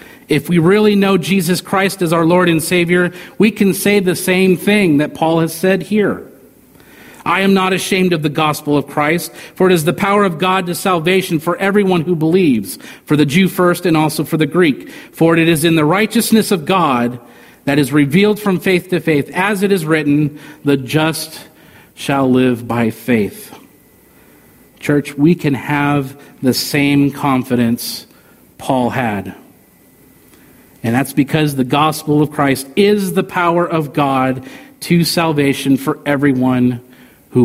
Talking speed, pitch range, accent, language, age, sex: 165 wpm, 140-180 Hz, American, English, 50-69, male